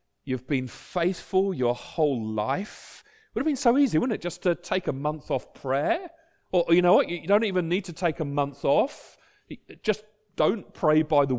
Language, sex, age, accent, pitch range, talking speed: English, male, 40-59, British, 125-175 Hz, 205 wpm